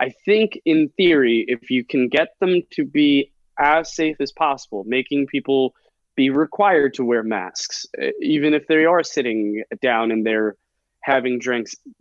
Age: 20-39